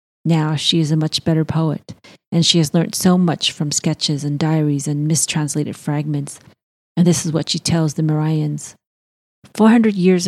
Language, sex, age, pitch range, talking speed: English, female, 30-49, 150-170 Hz, 180 wpm